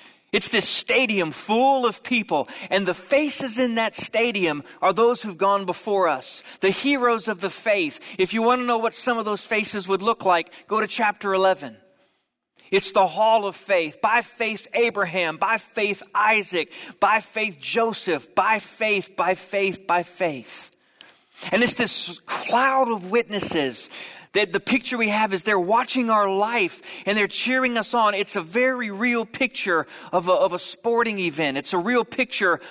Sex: male